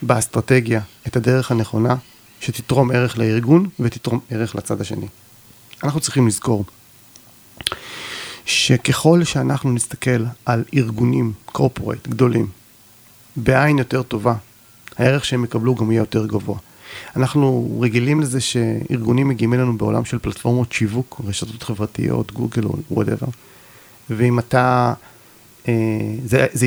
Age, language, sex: 40-59, Hebrew, male